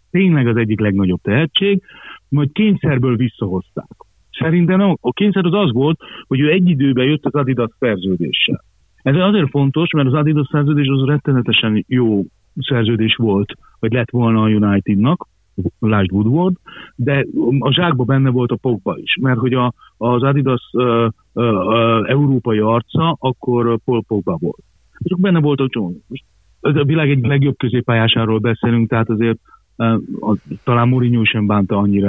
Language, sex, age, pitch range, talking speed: Hungarian, male, 50-69, 110-145 Hz, 140 wpm